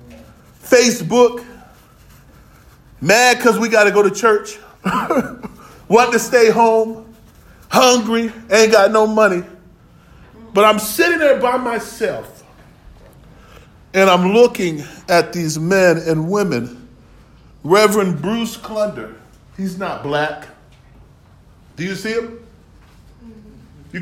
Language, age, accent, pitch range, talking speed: English, 40-59, American, 215-275 Hz, 105 wpm